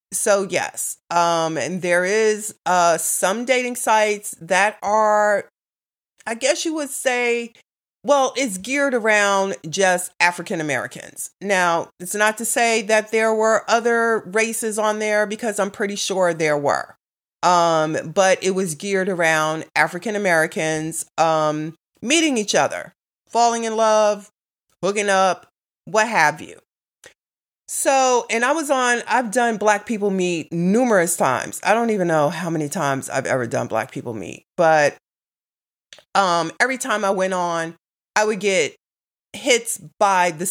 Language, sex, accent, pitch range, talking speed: English, female, American, 170-220 Hz, 150 wpm